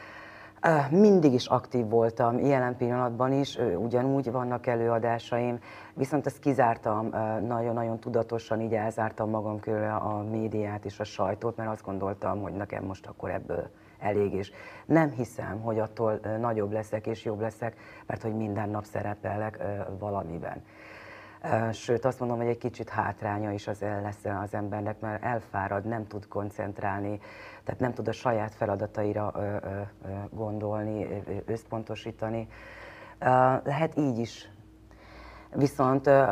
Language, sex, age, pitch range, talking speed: Hungarian, female, 30-49, 105-120 Hz, 130 wpm